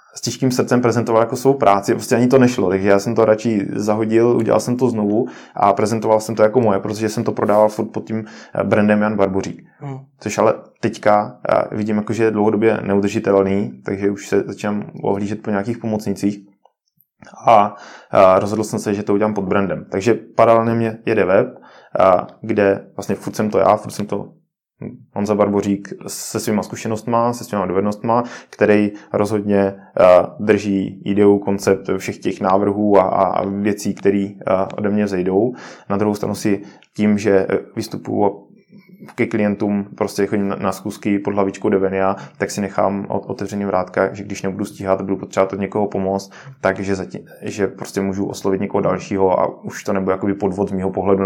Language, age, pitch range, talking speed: Czech, 20-39, 100-110 Hz, 170 wpm